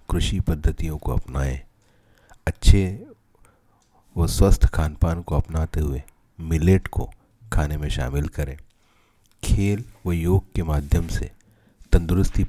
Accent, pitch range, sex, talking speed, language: native, 75-100 Hz, male, 115 wpm, Hindi